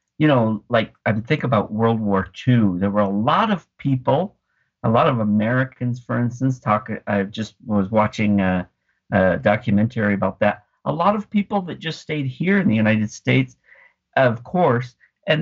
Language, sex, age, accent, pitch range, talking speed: English, male, 50-69, American, 105-135 Hz, 180 wpm